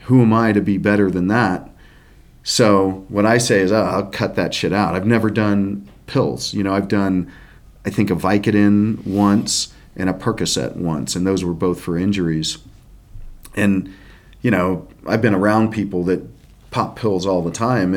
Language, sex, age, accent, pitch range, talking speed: English, male, 40-59, American, 90-105 Hz, 180 wpm